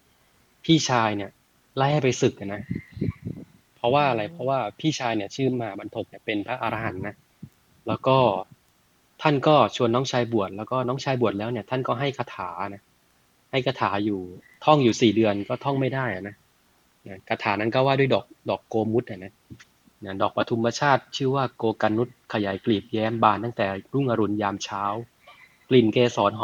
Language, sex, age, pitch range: Thai, male, 20-39, 100-125 Hz